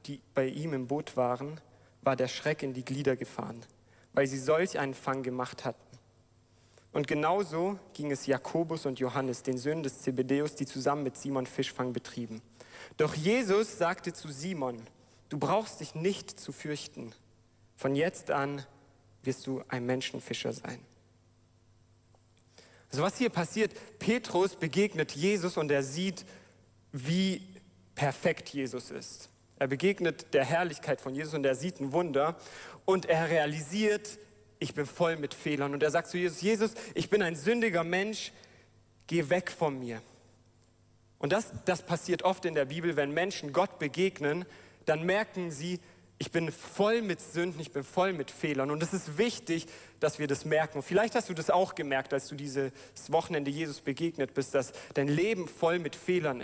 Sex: male